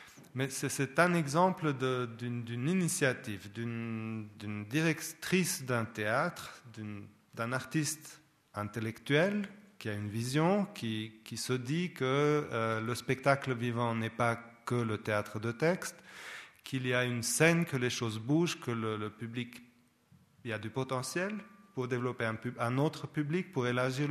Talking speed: 150 wpm